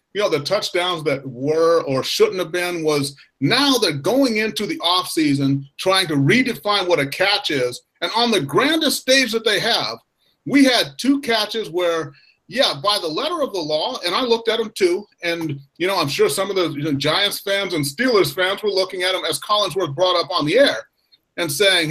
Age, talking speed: 30-49, 210 wpm